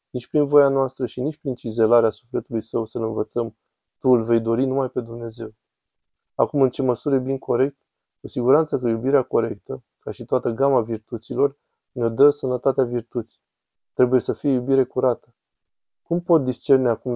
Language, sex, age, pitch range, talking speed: Romanian, male, 20-39, 115-135 Hz, 170 wpm